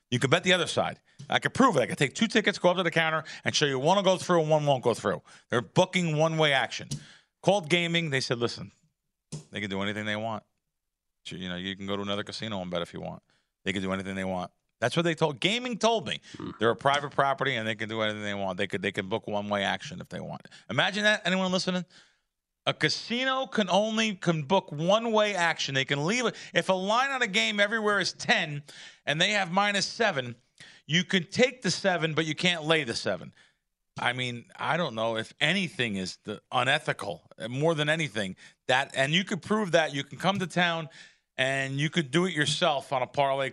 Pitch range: 115-185 Hz